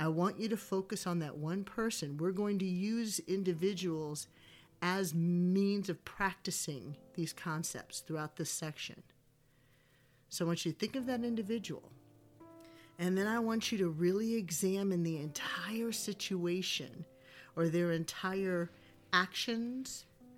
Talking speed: 140 wpm